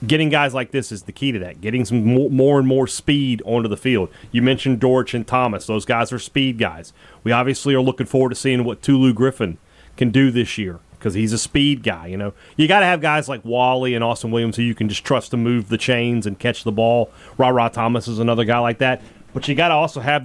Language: English